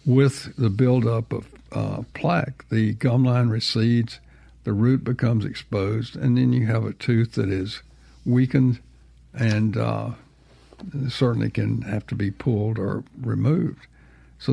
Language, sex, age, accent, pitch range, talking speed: English, male, 60-79, American, 105-130 Hz, 140 wpm